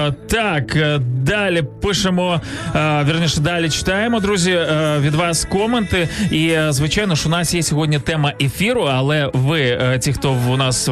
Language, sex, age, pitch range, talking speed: Ukrainian, male, 20-39, 140-175 Hz, 135 wpm